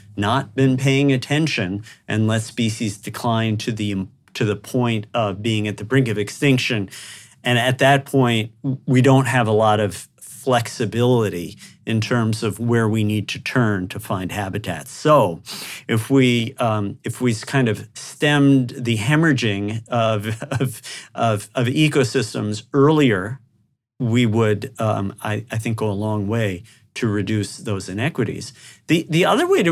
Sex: male